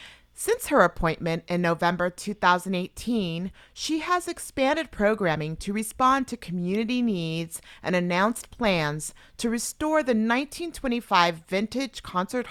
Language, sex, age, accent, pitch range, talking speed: English, female, 30-49, American, 160-230 Hz, 115 wpm